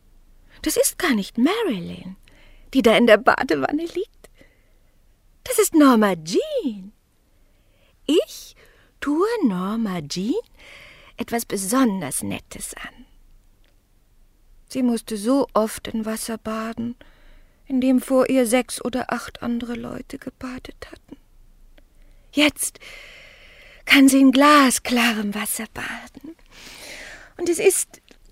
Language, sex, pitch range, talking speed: German, female, 215-300 Hz, 110 wpm